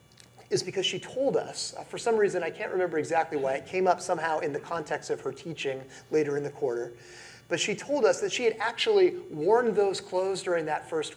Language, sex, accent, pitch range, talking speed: English, male, American, 145-195 Hz, 225 wpm